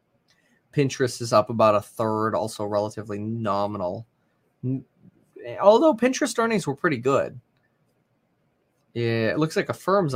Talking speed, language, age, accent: 120 wpm, English, 20-39, American